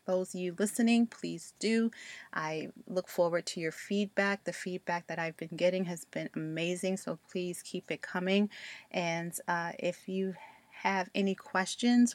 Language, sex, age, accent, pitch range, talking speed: English, female, 30-49, American, 170-200 Hz, 165 wpm